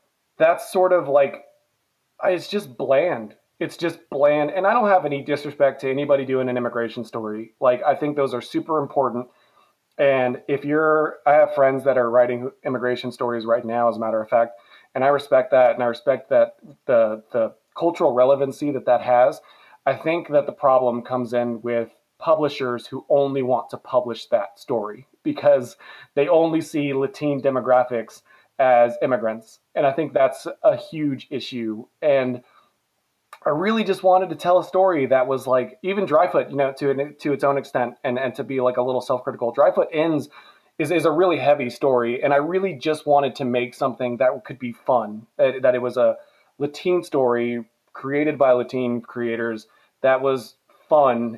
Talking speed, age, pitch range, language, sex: 185 wpm, 30-49, 125-150 Hz, English, male